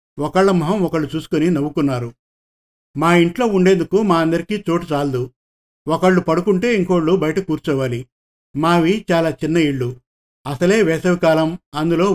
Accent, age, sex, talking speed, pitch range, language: native, 50-69, male, 120 wpm, 145-180 Hz, Telugu